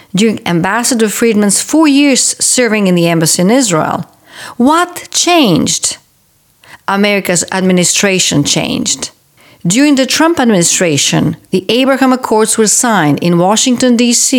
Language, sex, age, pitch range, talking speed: English, female, 50-69, 190-255 Hz, 115 wpm